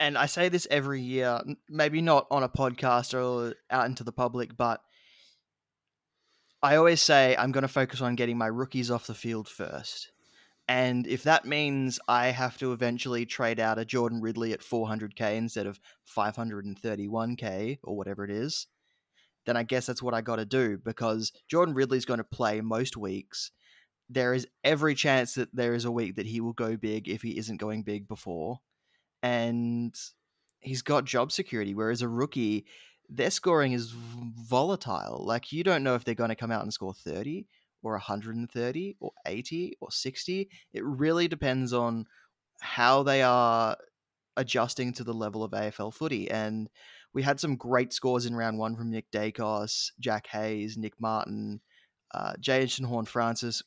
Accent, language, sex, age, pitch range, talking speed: Australian, English, male, 20-39, 110-130 Hz, 175 wpm